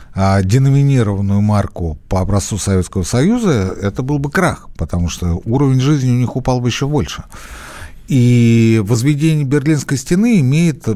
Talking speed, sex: 135 wpm, male